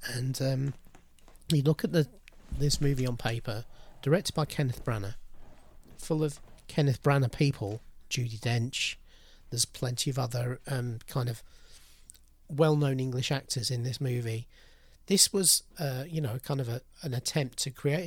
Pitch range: 120-145 Hz